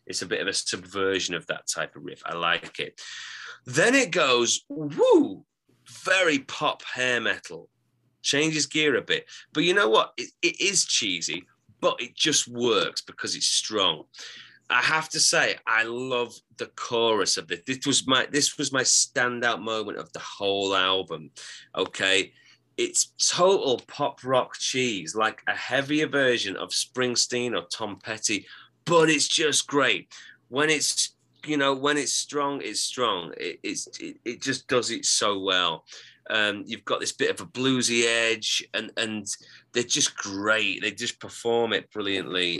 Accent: British